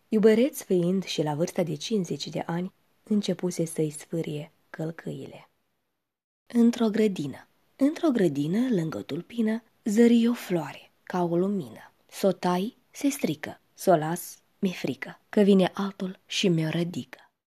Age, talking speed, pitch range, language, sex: 20-39, 140 wpm, 165-220 Hz, Romanian, female